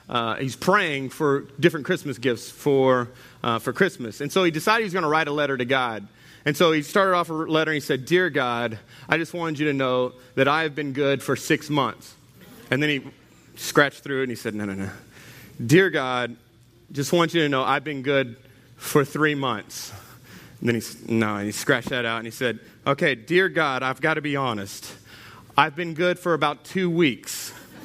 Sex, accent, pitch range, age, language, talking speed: male, American, 135-200 Hz, 30-49, English, 220 wpm